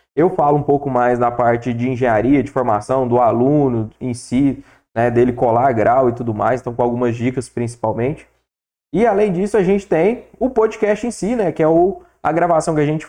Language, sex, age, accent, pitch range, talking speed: Portuguese, male, 20-39, Brazilian, 135-175 Hz, 205 wpm